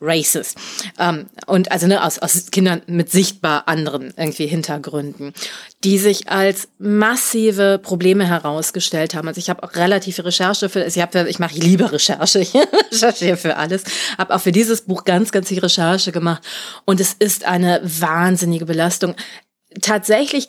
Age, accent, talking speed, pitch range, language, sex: 30-49, German, 160 wpm, 175-215 Hz, German, female